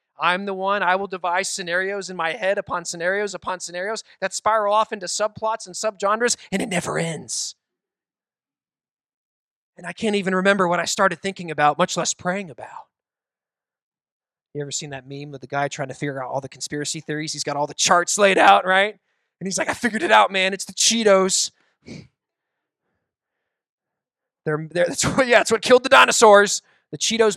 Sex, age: male, 20-39